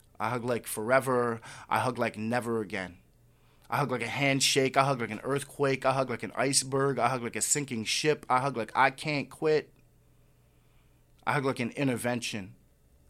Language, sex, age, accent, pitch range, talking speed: English, male, 20-39, American, 115-140 Hz, 190 wpm